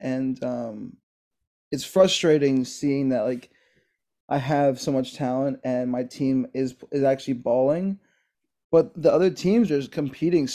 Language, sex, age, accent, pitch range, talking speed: English, male, 20-39, American, 125-145 Hz, 150 wpm